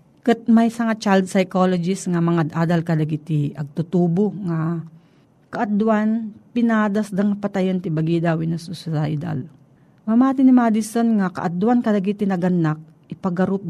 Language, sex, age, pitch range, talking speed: Filipino, female, 40-59, 165-215 Hz, 110 wpm